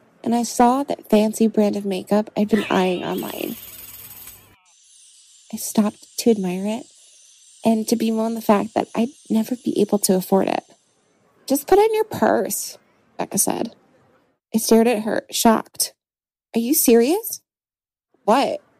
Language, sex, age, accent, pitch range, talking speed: English, female, 20-39, American, 210-300 Hz, 150 wpm